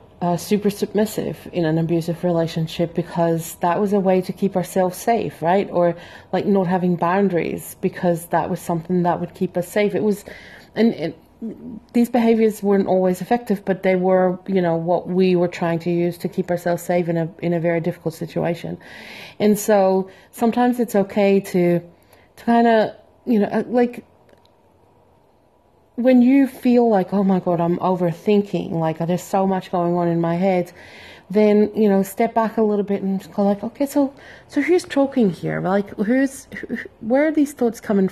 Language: English